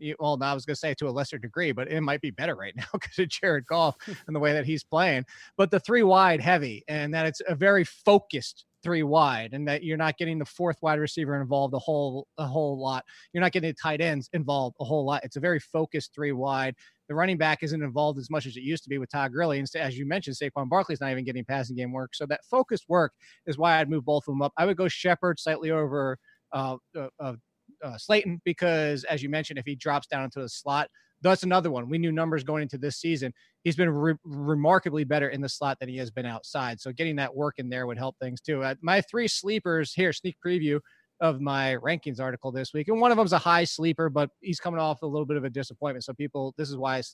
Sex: male